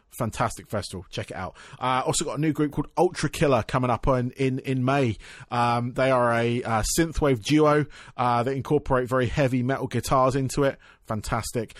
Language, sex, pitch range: English, male, 130-165 Hz